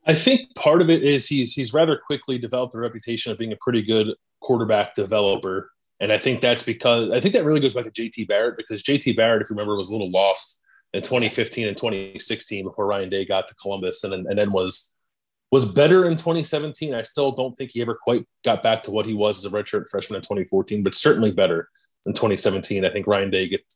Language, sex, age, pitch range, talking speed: English, male, 20-39, 105-165 Hz, 230 wpm